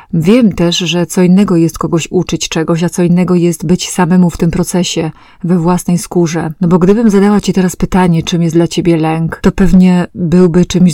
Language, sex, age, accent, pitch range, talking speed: Polish, female, 30-49, native, 165-185 Hz, 205 wpm